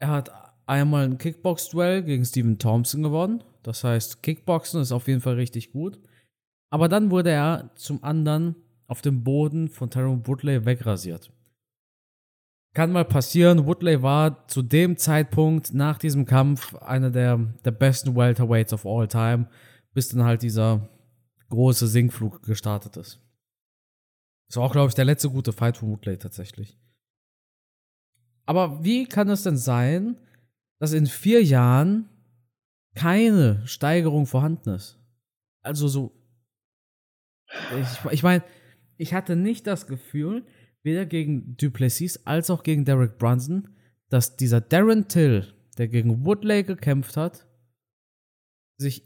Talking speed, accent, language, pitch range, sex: 135 wpm, German, German, 120-155 Hz, male